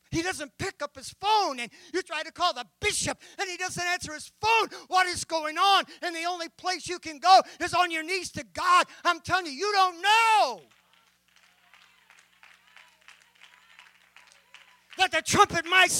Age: 40-59